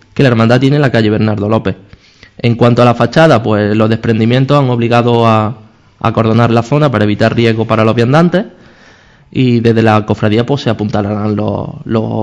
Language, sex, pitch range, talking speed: Spanish, male, 110-135 Hz, 190 wpm